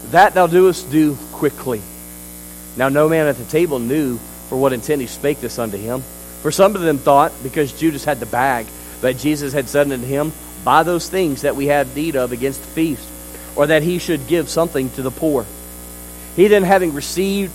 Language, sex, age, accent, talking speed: English, male, 50-69, American, 205 wpm